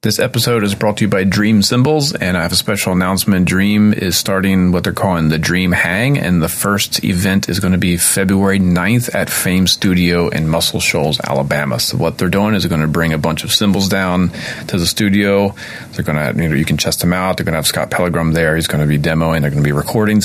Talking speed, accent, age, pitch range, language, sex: 255 wpm, American, 40-59, 80-100 Hz, English, male